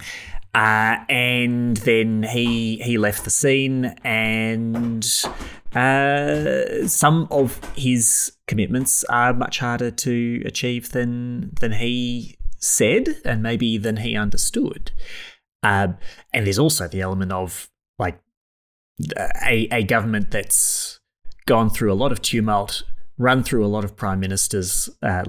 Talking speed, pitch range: 130 wpm, 95-120 Hz